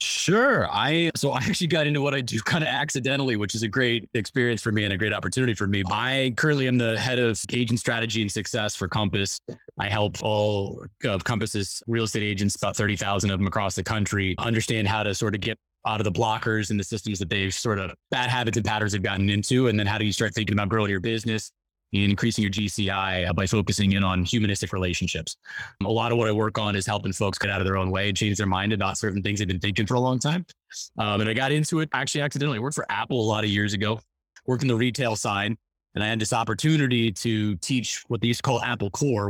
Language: English